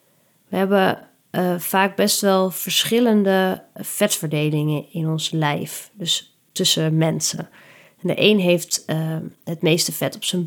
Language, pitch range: Dutch, 165-195 Hz